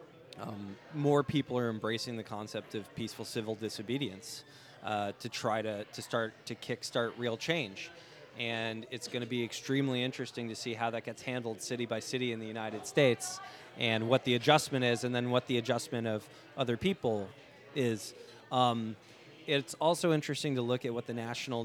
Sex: male